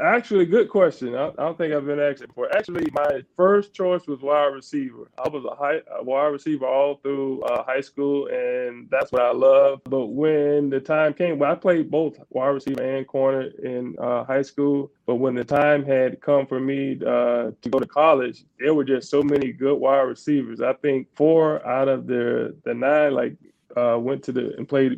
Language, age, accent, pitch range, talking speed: English, 20-39, American, 130-145 Hz, 210 wpm